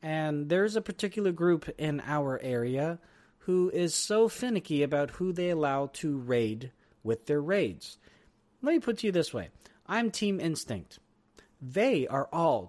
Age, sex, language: 40-59, male, English